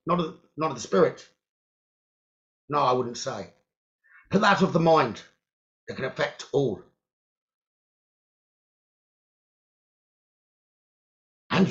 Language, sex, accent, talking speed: English, male, British, 95 wpm